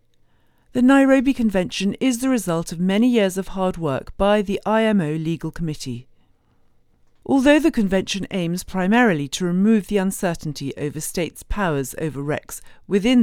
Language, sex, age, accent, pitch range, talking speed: English, female, 40-59, British, 150-210 Hz, 145 wpm